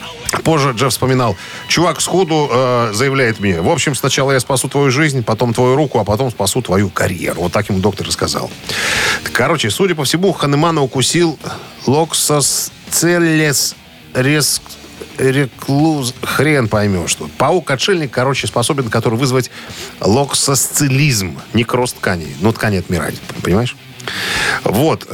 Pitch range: 105-140 Hz